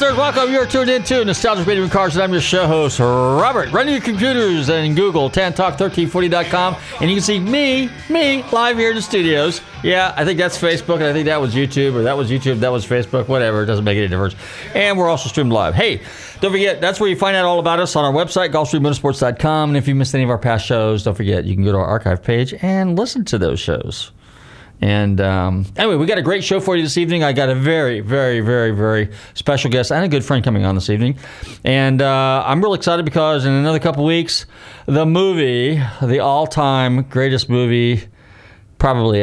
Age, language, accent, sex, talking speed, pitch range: 40-59, English, American, male, 220 wpm, 110-170 Hz